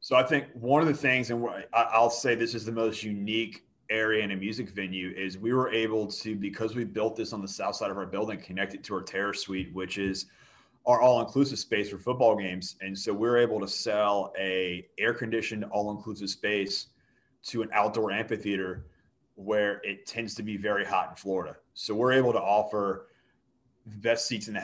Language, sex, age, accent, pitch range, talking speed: English, male, 30-49, American, 95-110 Hz, 210 wpm